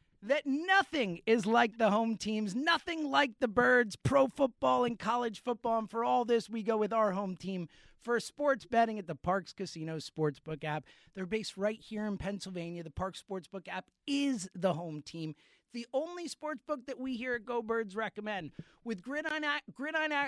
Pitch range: 200-260 Hz